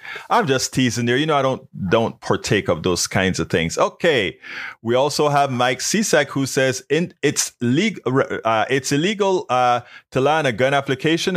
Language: English